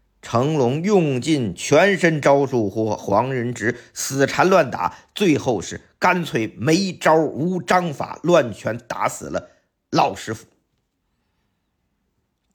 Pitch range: 110-160 Hz